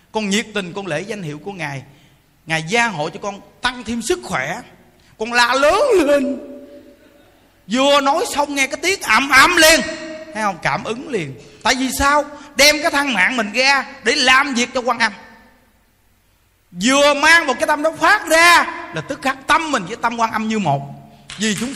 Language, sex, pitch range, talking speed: Vietnamese, male, 180-275 Hz, 200 wpm